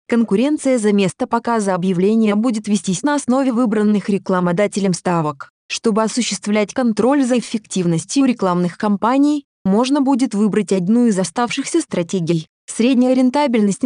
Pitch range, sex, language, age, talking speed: 190-235 Hz, female, Russian, 20-39, 120 wpm